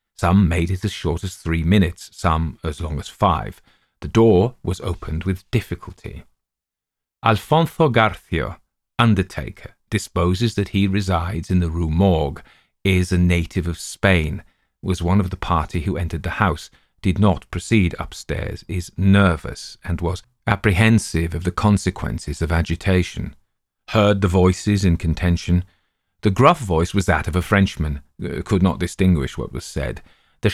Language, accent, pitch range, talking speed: English, British, 85-105 Hz, 155 wpm